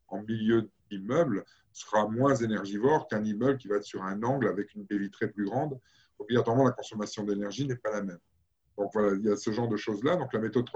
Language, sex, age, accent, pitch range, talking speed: French, male, 50-69, French, 100-130 Hz, 225 wpm